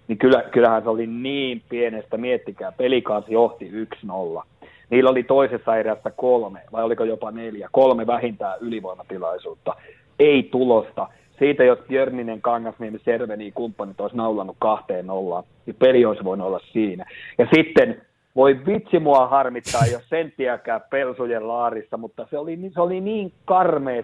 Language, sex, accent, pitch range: Finnish, male, native, 115-185 Hz